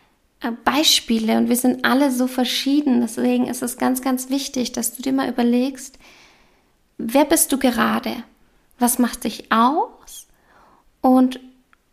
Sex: female